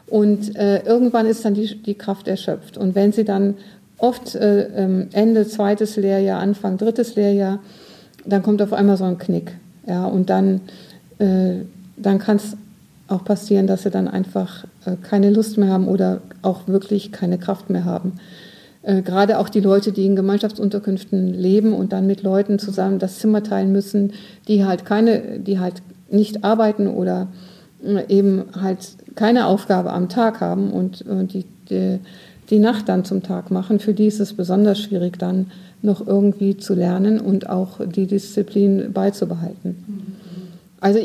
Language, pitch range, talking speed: German, 190-210 Hz, 165 wpm